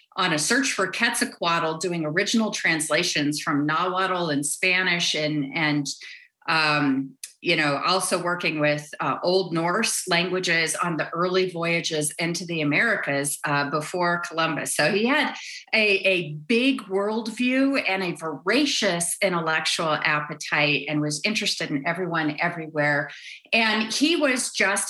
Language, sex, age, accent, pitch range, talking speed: English, female, 40-59, American, 165-220 Hz, 135 wpm